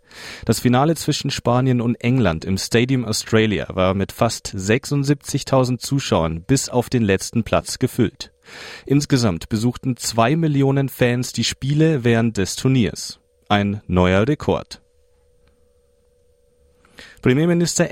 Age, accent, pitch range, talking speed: 40-59, German, 105-130 Hz, 115 wpm